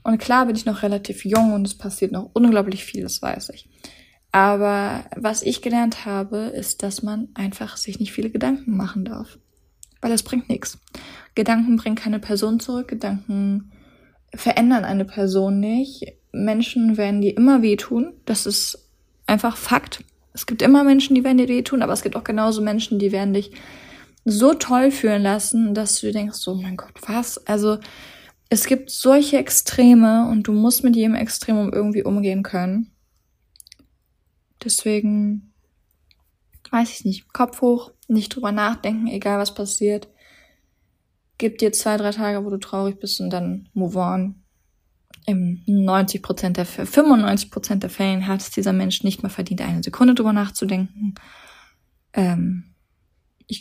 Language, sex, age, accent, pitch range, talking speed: German, female, 20-39, German, 195-230 Hz, 160 wpm